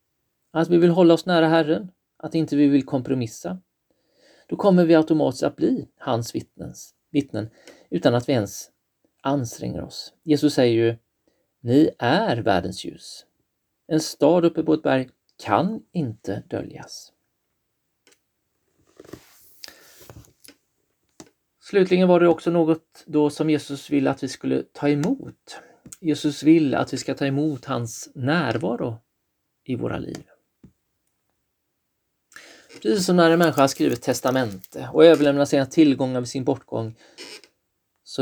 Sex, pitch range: male, 125-160 Hz